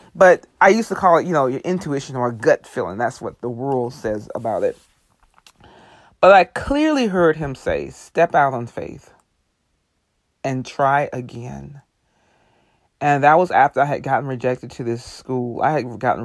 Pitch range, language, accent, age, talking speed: 120-160 Hz, English, American, 30-49, 175 wpm